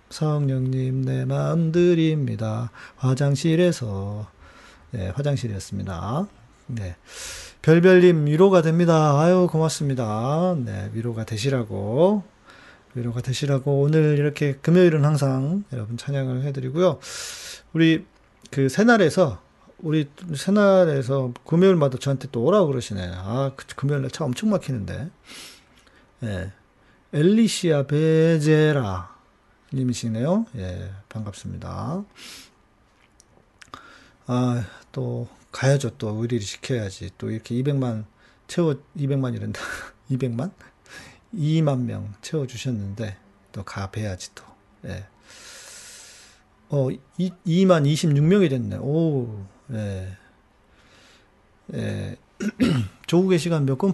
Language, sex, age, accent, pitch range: Korean, male, 40-59, native, 115-160 Hz